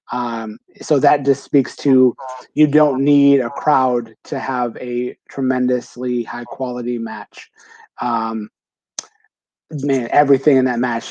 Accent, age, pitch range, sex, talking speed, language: American, 30-49, 125-140 Hz, male, 130 wpm, English